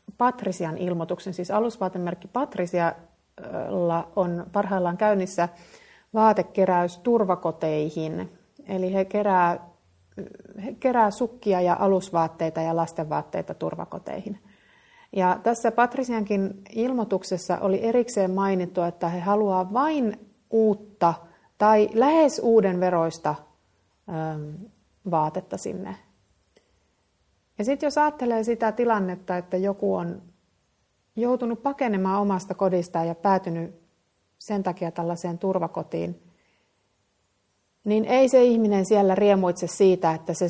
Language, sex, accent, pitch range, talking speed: Finnish, female, native, 175-220 Hz, 100 wpm